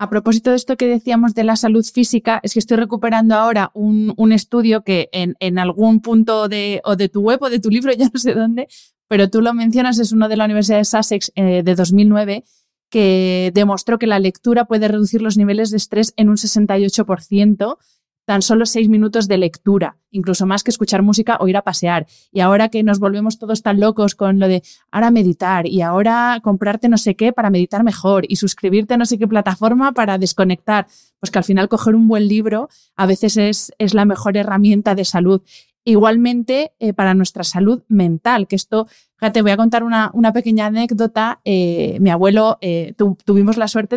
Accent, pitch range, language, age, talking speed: Spanish, 195-230 Hz, Spanish, 20-39, 205 wpm